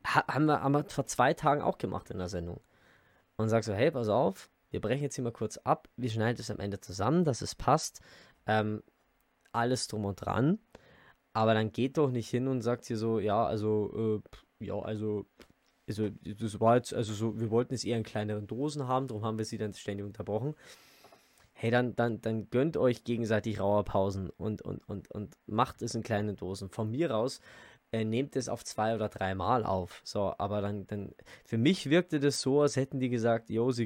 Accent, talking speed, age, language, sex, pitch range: German, 210 wpm, 20-39, German, male, 105-120 Hz